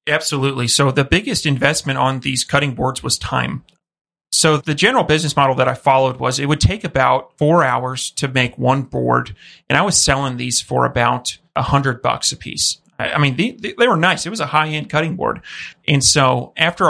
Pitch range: 130-155 Hz